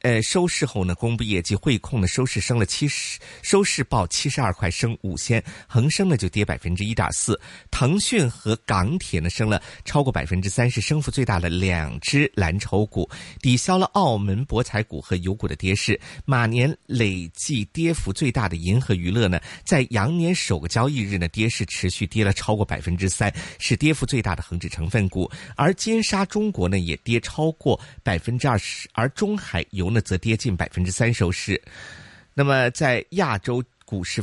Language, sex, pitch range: Chinese, male, 95-135 Hz